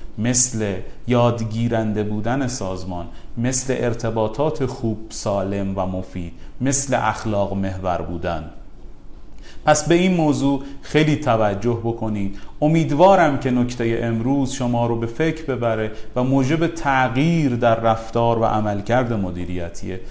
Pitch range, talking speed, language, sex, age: 105-135 Hz, 115 wpm, Persian, male, 30-49